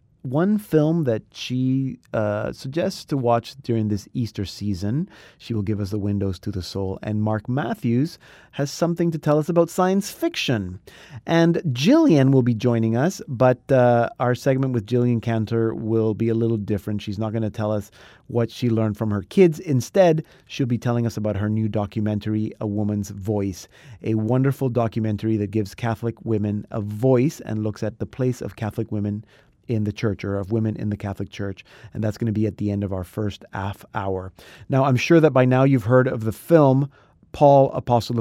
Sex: male